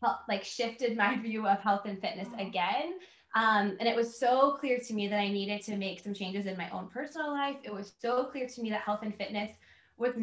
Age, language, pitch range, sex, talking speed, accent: 20-39, English, 195-245 Hz, female, 235 wpm, American